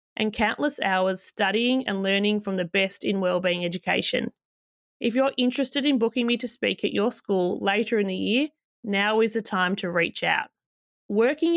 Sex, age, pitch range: female, 20-39, 195-250 Hz